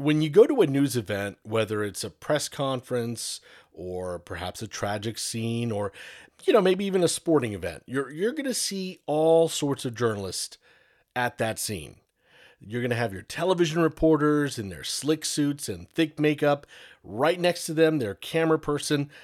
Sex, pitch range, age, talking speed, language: male, 110-150 Hz, 40-59, 180 wpm, English